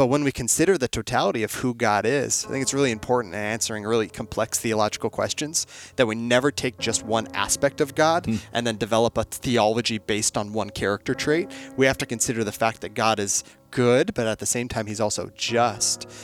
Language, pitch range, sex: English, 110-145 Hz, male